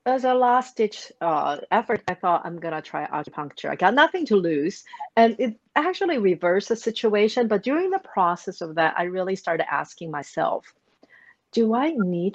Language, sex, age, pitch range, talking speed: English, female, 50-69, 165-225 Hz, 185 wpm